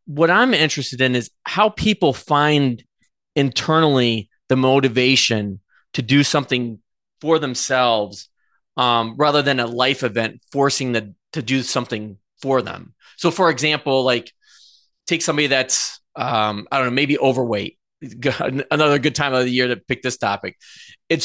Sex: male